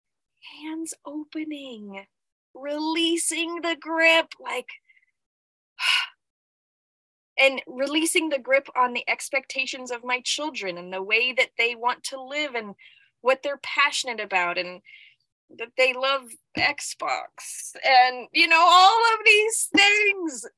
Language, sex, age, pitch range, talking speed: English, female, 20-39, 235-330 Hz, 120 wpm